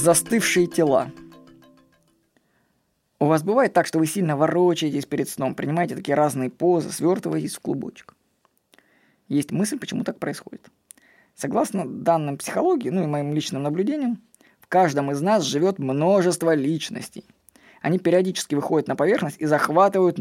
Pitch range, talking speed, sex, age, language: 145-190 Hz, 135 wpm, female, 20-39, Russian